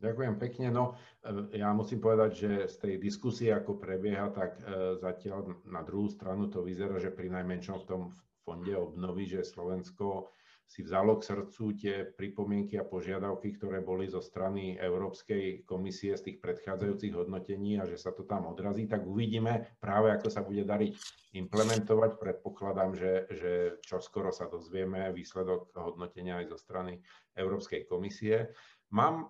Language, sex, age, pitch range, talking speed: Slovak, male, 50-69, 95-115 Hz, 150 wpm